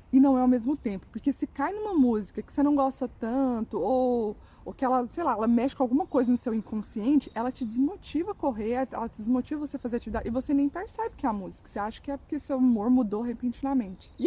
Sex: female